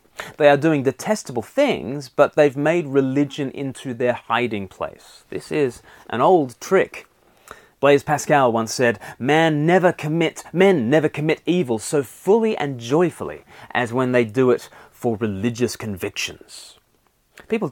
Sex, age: male, 30-49